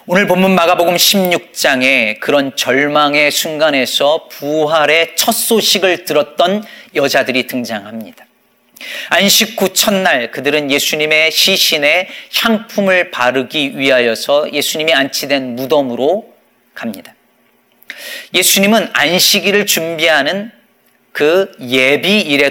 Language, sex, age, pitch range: Korean, male, 40-59, 135-195 Hz